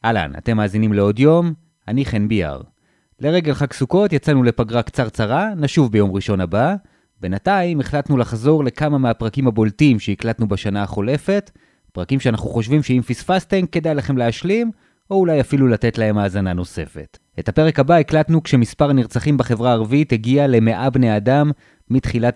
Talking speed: 150 wpm